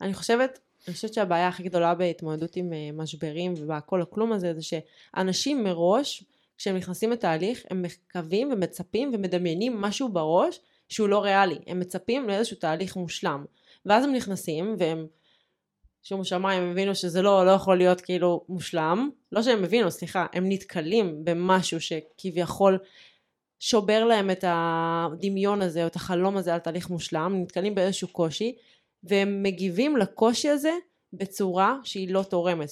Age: 20-39